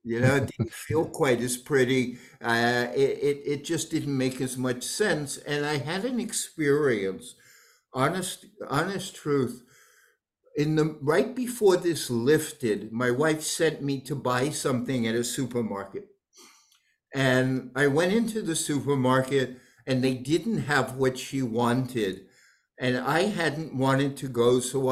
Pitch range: 130-175 Hz